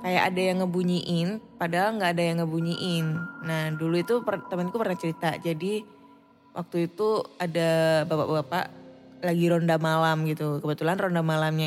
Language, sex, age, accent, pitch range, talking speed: Indonesian, female, 20-39, native, 160-220 Hz, 140 wpm